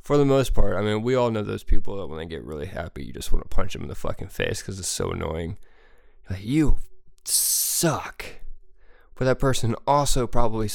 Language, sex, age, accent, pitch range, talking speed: English, male, 20-39, American, 100-135 Hz, 220 wpm